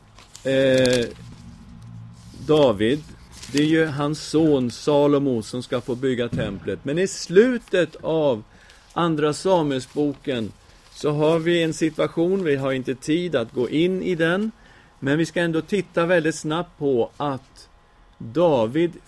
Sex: male